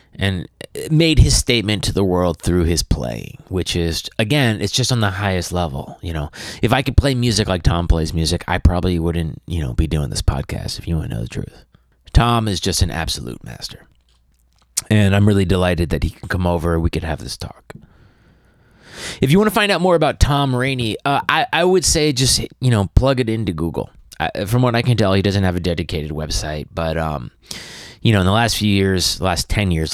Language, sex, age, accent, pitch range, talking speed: English, male, 30-49, American, 80-105 Hz, 225 wpm